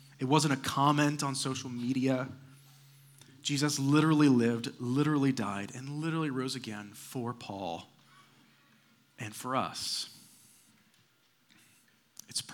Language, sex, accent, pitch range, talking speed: English, male, American, 120-145 Hz, 105 wpm